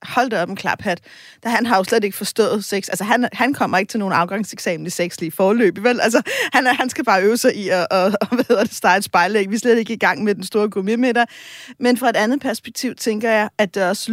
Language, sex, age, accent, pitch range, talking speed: Danish, female, 30-49, native, 200-245 Hz, 250 wpm